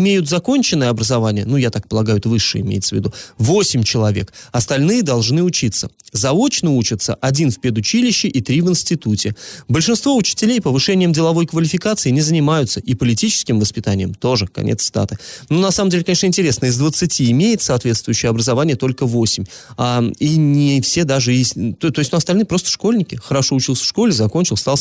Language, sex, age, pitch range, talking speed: Russian, male, 20-39, 115-170 Hz, 170 wpm